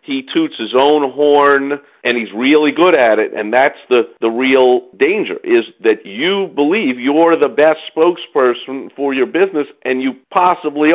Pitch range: 130-185 Hz